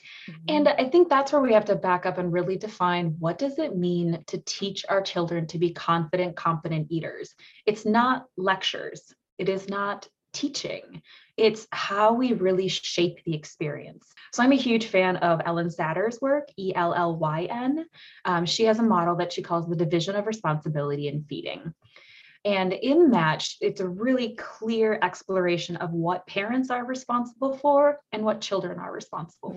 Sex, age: female, 20-39